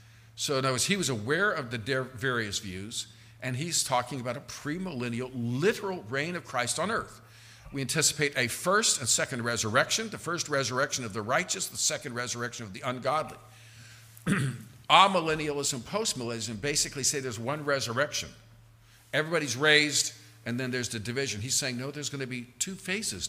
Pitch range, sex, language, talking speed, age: 115-140 Hz, male, English, 165 wpm, 50-69